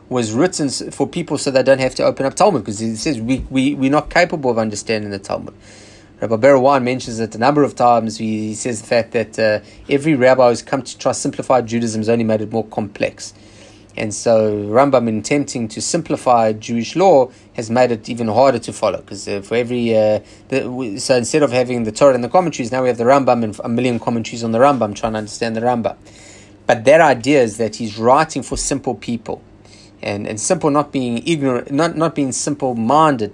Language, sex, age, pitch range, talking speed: English, male, 30-49, 110-135 Hz, 220 wpm